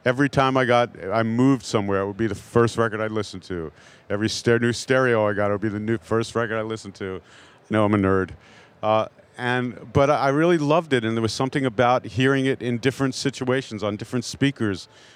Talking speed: 220 wpm